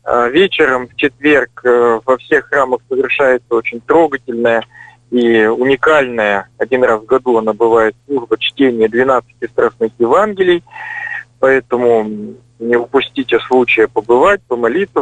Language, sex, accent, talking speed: Russian, male, native, 110 wpm